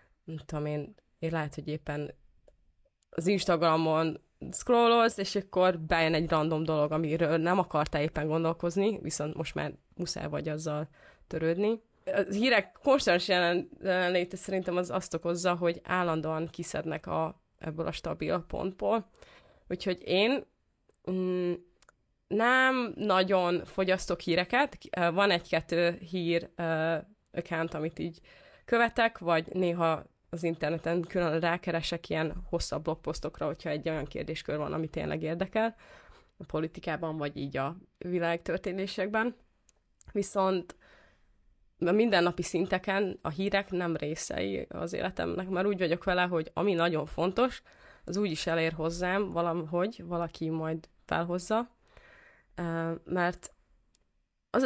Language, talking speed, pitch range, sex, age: Hungarian, 120 wpm, 160-190 Hz, female, 20-39